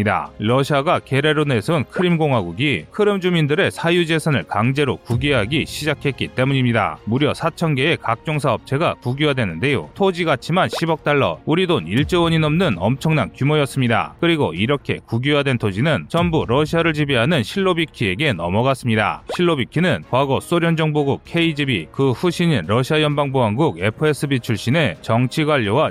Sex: male